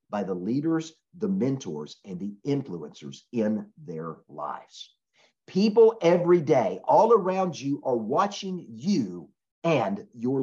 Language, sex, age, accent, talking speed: English, male, 50-69, American, 125 wpm